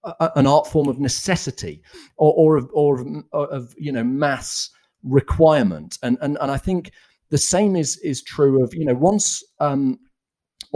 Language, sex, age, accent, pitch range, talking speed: English, male, 40-59, British, 110-150 Hz, 160 wpm